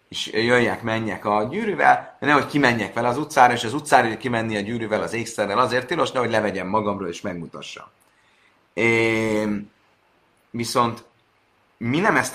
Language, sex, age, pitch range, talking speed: Hungarian, male, 30-49, 110-145 Hz, 150 wpm